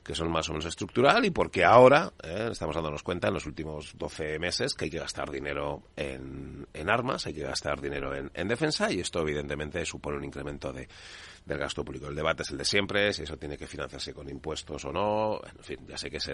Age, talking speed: 40-59, 235 wpm